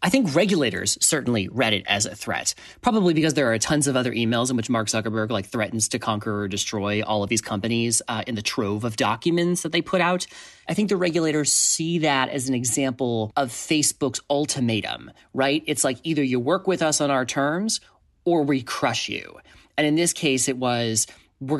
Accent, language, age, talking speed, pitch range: American, English, 30-49, 210 wpm, 120-155 Hz